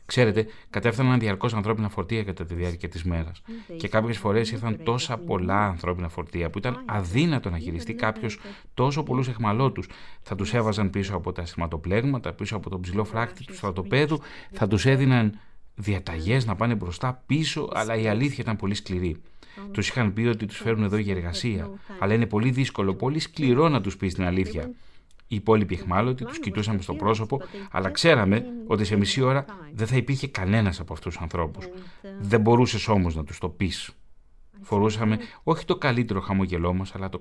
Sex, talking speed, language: male, 180 wpm, Greek